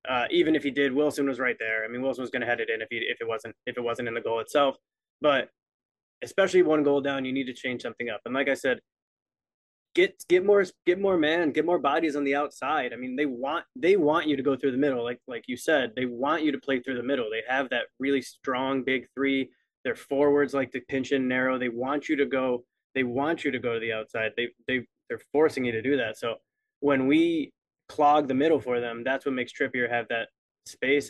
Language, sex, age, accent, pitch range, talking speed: English, male, 20-39, American, 125-150 Hz, 255 wpm